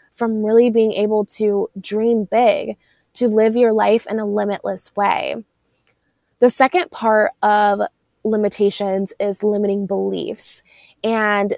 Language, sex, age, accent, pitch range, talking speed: English, female, 20-39, American, 200-240 Hz, 125 wpm